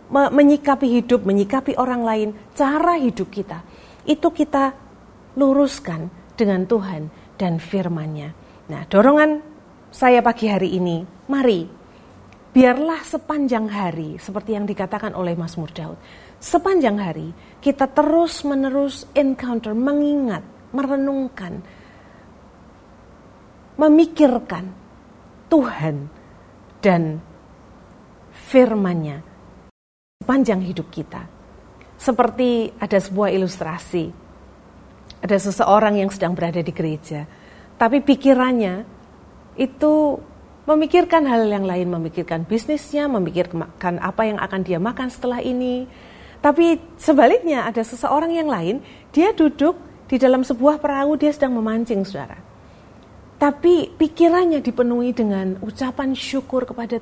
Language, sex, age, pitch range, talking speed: Indonesian, female, 40-59, 185-280 Hz, 100 wpm